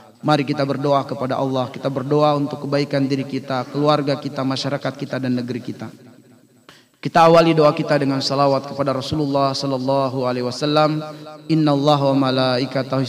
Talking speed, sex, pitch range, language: 140 wpm, male, 125-145 Hz, Indonesian